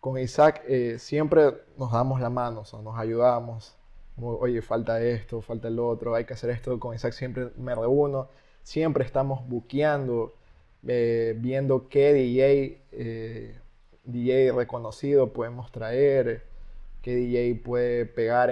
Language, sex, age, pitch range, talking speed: Spanish, male, 20-39, 115-135 Hz, 140 wpm